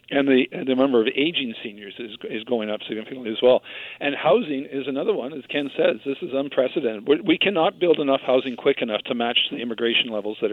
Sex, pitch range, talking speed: male, 120-145 Hz, 230 wpm